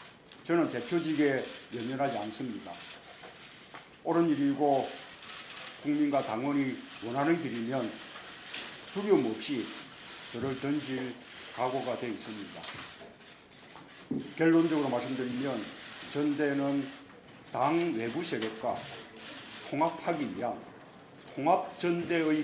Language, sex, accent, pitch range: Korean, male, native, 130-170 Hz